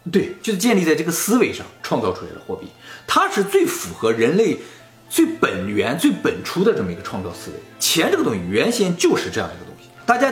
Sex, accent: male, native